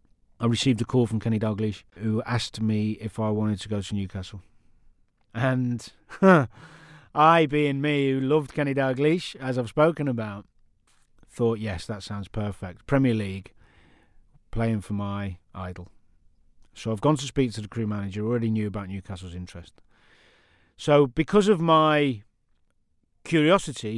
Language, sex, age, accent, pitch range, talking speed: English, male, 40-59, British, 105-130 Hz, 150 wpm